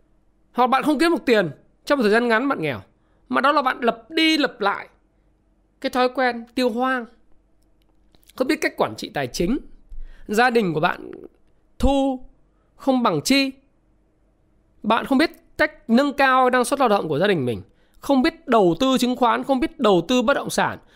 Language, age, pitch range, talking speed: Vietnamese, 20-39, 235-290 Hz, 195 wpm